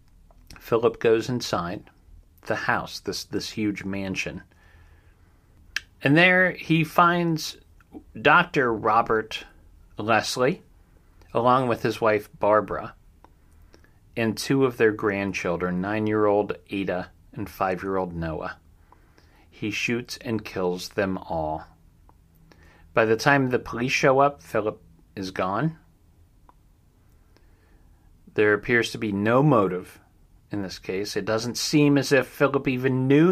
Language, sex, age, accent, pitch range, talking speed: English, male, 40-59, American, 85-115 Hz, 115 wpm